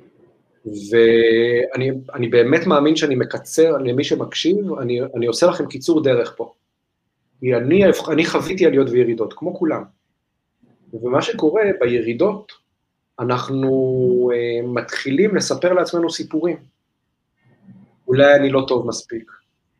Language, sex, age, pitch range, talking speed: Hebrew, male, 30-49, 120-170 Hz, 105 wpm